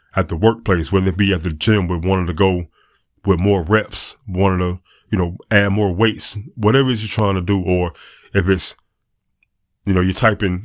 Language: English